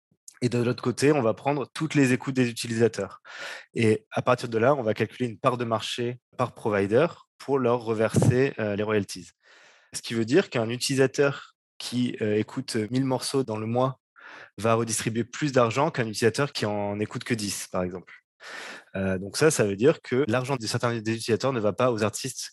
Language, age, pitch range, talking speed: French, 20-39, 105-130 Hz, 190 wpm